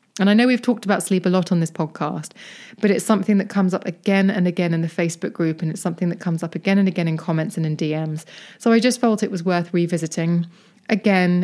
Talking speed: 250 wpm